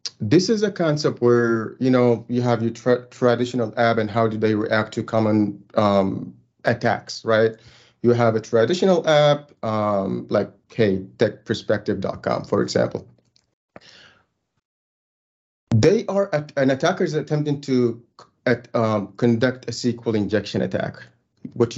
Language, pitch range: English, 110-140 Hz